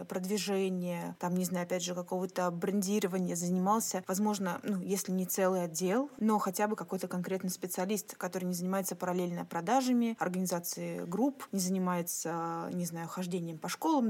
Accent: native